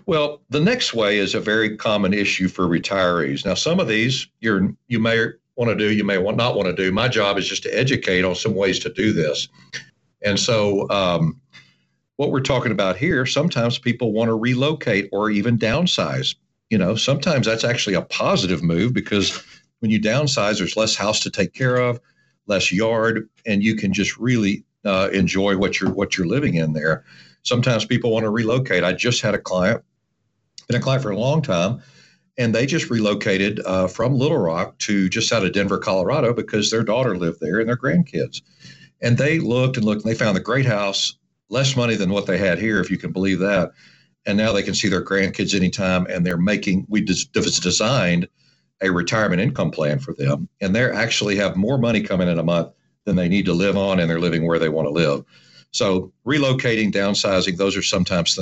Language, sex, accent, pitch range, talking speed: English, male, American, 95-120 Hz, 210 wpm